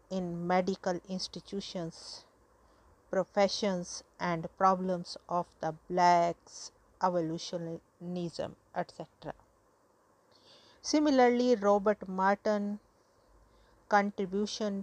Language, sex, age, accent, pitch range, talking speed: English, female, 50-69, Indian, 180-230 Hz, 60 wpm